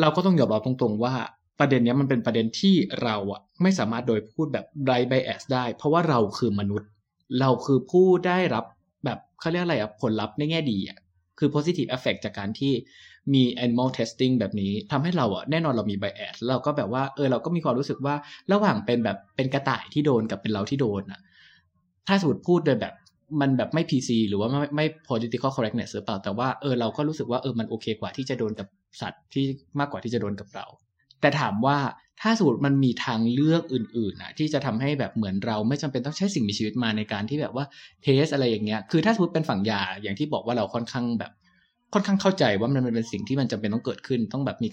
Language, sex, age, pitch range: Thai, male, 20-39, 110-145 Hz